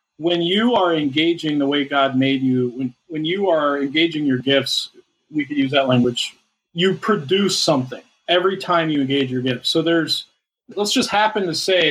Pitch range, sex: 140-185 Hz, male